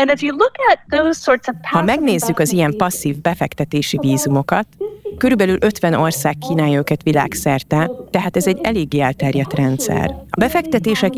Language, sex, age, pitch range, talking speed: Hungarian, female, 30-49, 150-190 Hz, 115 wpm